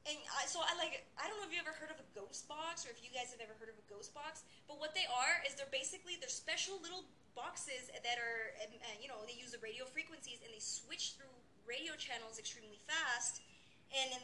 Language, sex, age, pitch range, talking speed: English, female, 20-39, 240-305 Hz, 245 wpm